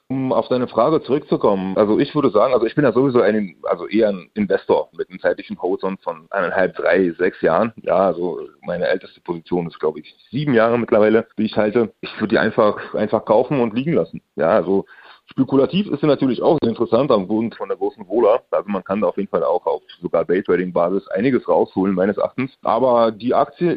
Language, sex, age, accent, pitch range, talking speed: German, male, 30-49, German, 105-135 Hz, 215 wpm